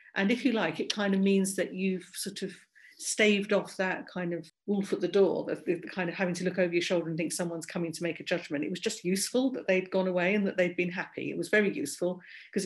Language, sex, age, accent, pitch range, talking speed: English, female, 50-69, British, 175-205 Hz, 270 wpm